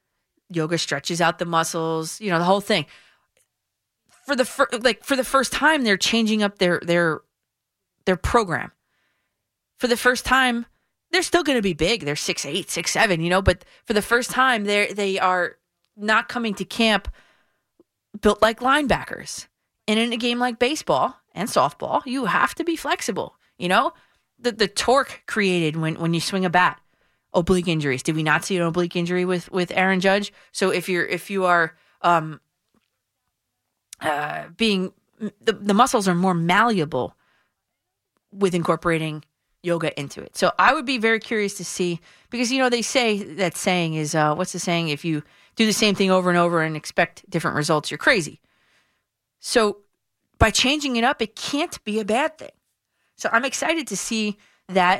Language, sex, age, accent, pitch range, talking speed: English, female, 20-39, American, 170-235 Hz, 180 wpm